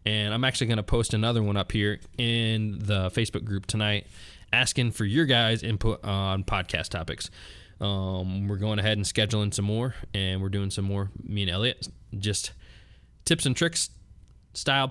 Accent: American